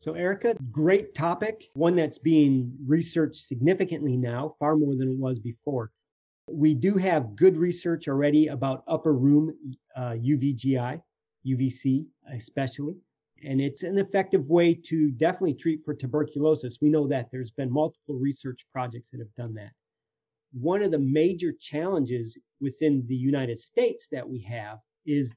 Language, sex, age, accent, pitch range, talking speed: English, male, 40-59, American, 125-160 Hz, 150 wpm